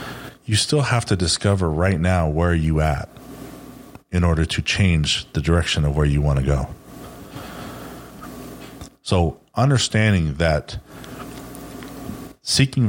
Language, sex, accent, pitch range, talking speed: English, male, American, 90-125 Hz, 120 wpm